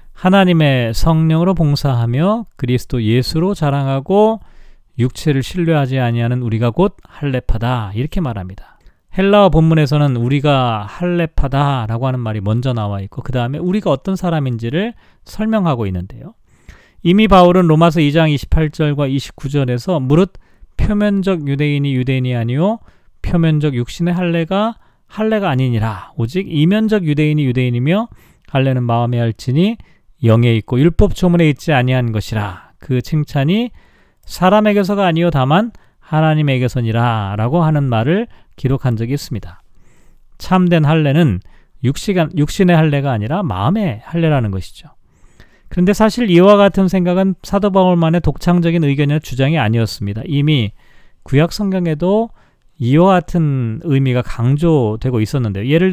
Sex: male